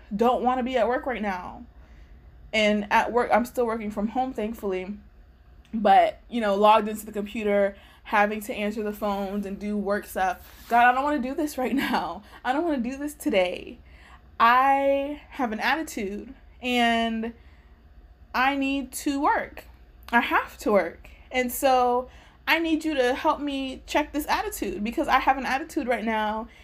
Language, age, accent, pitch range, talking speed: English, 20-39, American, 200-270 Hz, 180 wpm